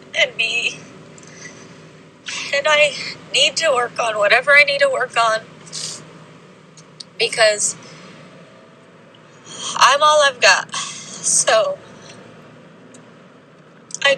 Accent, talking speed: American, 90 wpm